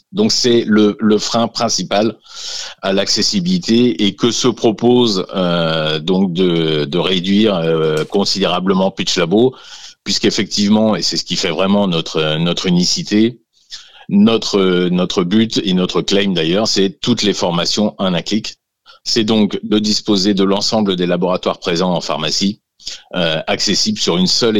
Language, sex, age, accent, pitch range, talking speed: French, male, 50-69, French, 85-110 Hz, 150 wpm